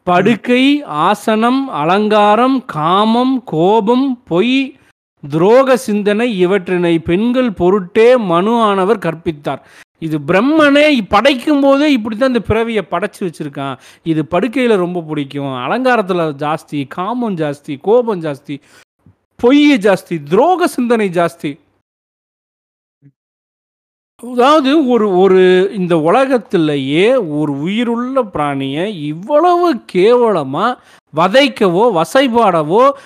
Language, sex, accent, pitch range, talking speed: Tamil, male, native, 165-245 Hz, 95 wpm